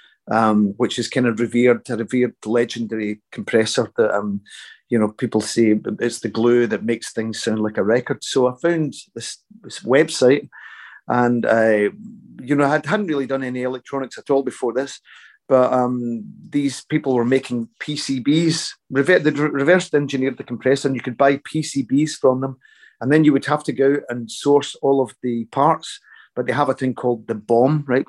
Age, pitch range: 40-59, 120-145 Hz